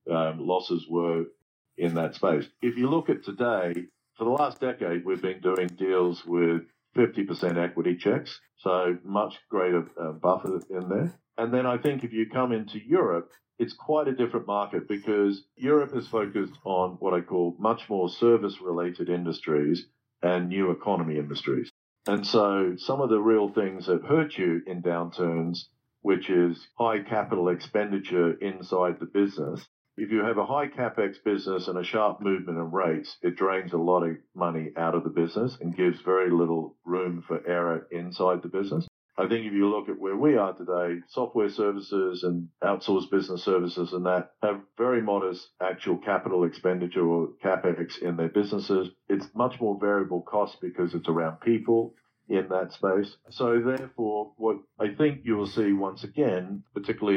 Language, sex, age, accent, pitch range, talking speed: English, male, 50-69, Australian, 85-105 Hz, 175 wpm